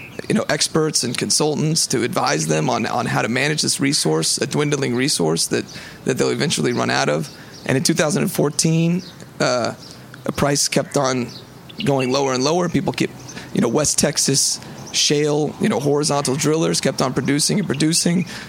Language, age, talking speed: English, 30-49, 170 wpm